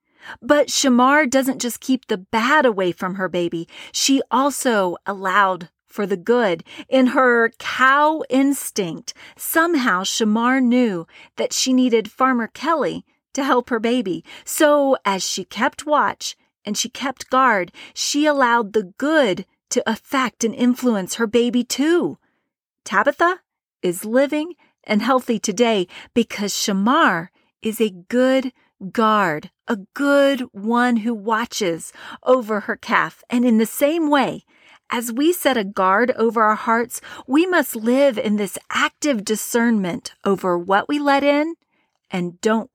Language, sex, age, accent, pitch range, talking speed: English, female, 40-59, American, 210-280 Hz, 140 wpm